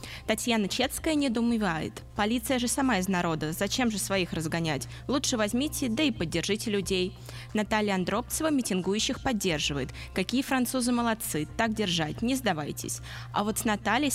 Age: 20-39